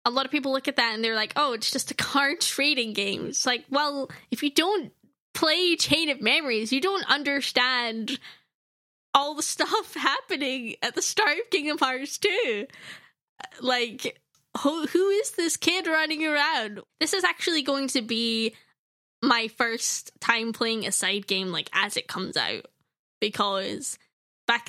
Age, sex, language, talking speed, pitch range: 10-29, female, English, 170 wpm, 205-285 Hz